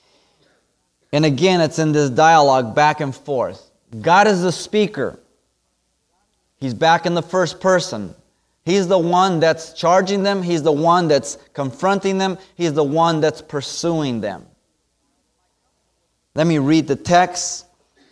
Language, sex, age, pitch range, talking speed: English, male, 30-49, 130-170 Hz, 140 wpm